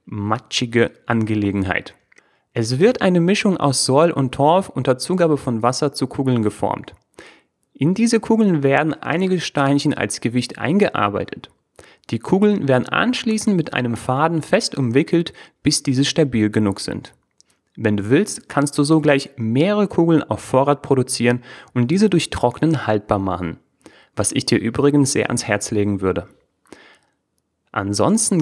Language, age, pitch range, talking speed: German, 30-49, 110-160 Hz, 140 wpm